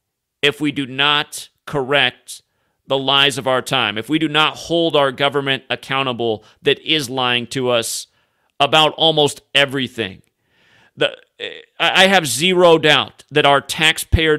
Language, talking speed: English, 140 wpm